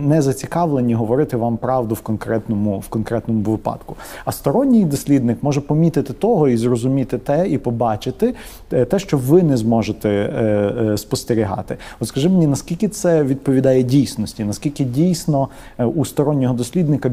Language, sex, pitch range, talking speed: Ukrainian, male, 110-140 Hz, 145 wpm